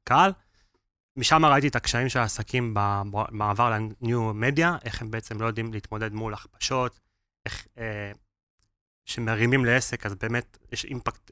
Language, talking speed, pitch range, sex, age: Hebrew, 135 wpm, 105-130 Hz, male, 20-39